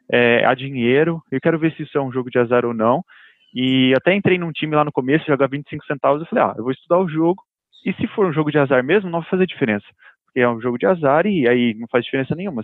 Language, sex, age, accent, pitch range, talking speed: Portuguese, male, 20-39, Brazilian, 125-155 Hz, 275 wpm